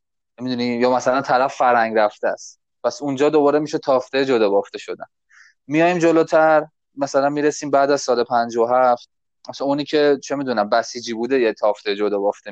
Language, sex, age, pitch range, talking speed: Persian, male, 20-39, 115-140 Hz, 160 wpm